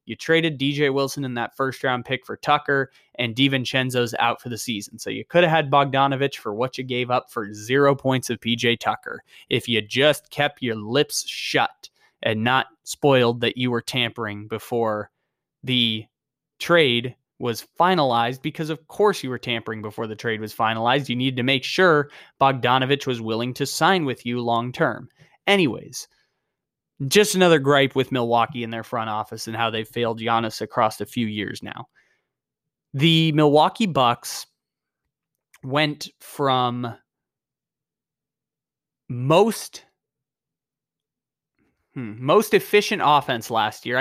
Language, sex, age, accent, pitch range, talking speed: English, male, 20-39, American, 115-145 Hz, 145 wpm